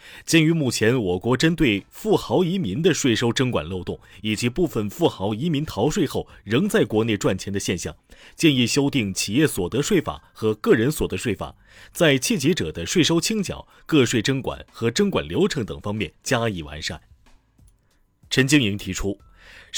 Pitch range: 105-150 Hz